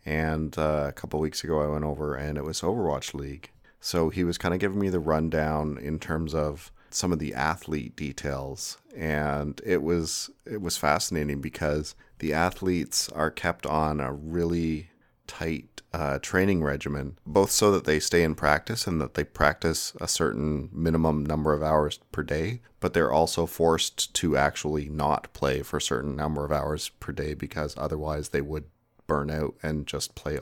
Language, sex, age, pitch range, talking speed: English, male, 30-49, 75-85 Hz, 180 wpm